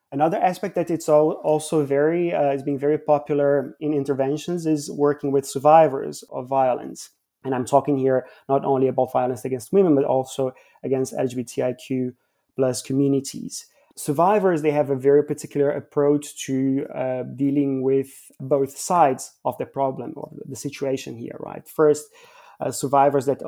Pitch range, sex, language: 130-150 Hz, male, English